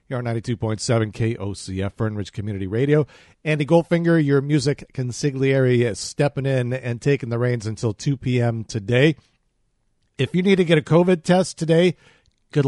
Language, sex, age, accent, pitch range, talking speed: English, male, 50-69, American, 115-150 Hz, 150 wpm